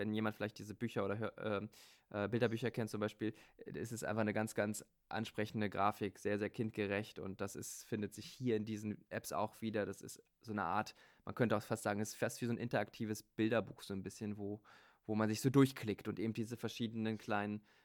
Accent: German